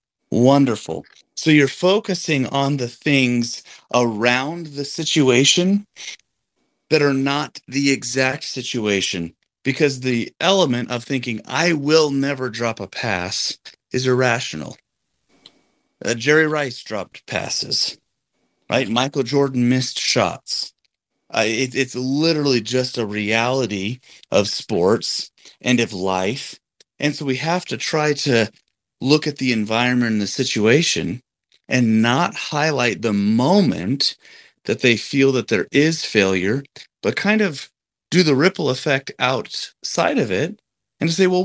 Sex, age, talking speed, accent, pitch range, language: male, 30-49, 130 wpm, American, 120-155 Hz, English